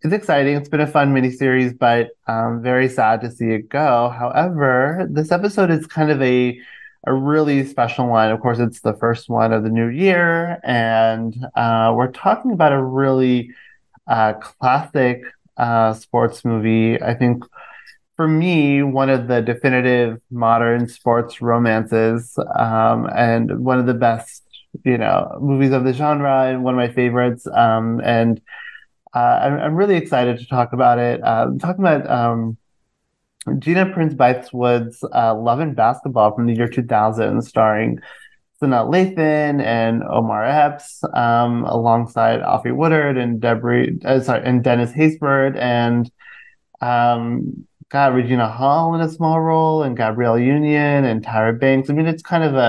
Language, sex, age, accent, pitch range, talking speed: English, male, 30-49, American, 115-145 Hz, 160 wpm